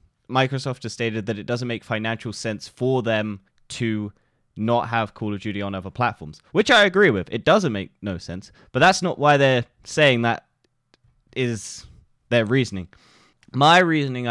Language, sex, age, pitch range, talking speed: English, male, 20-39, 100-120 Hz, 170 wpm